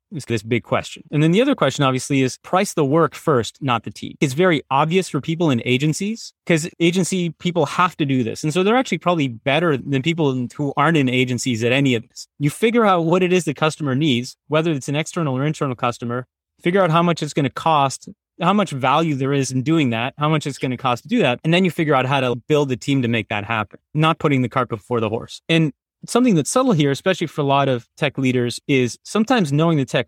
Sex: male